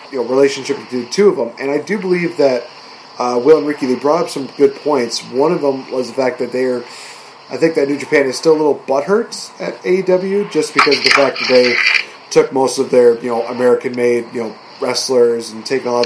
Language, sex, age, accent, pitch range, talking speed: English, male, 30-49, American, 125-170 Hz, 245 wpm